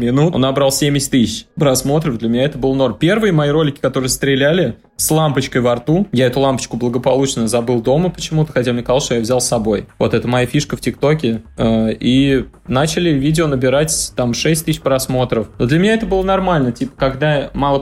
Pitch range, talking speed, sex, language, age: 115-145 Hz, 200 wpm, male, Russian, 20-39